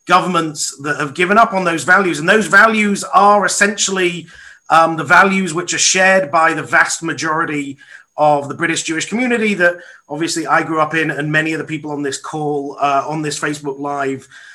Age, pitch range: 30-49, 150-185 Hz